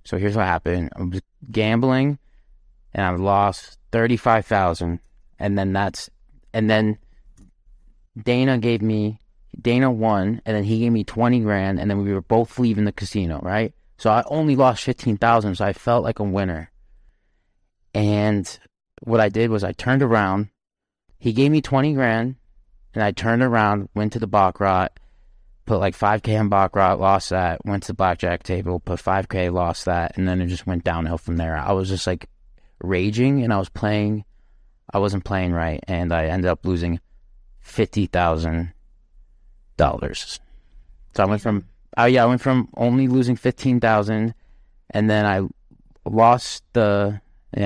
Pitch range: 90-110 Hz